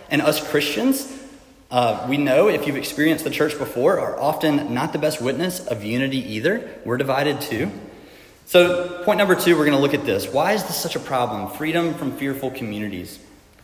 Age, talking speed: 30-49, 195 wpm